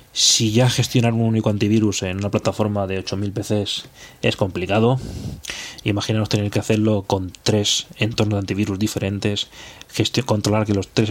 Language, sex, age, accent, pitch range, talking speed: Spanish, male, 20-39, Spanish, 100-115 Hz, 155 wpm